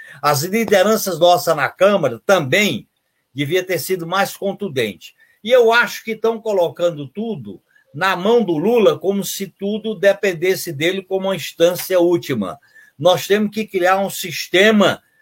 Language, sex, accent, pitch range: Portuguese, male, Brazilian, 165-210 Hz